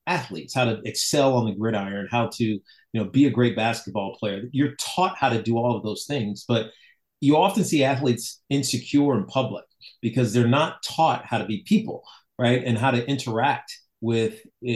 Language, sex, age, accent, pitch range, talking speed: English, male, 40-59, American, 110-135 Hz, 190 wpm